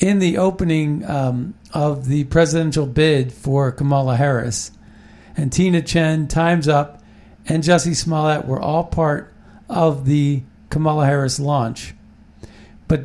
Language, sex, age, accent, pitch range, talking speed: English, male, 50-69, American, 125-165 Hz, 130 wpm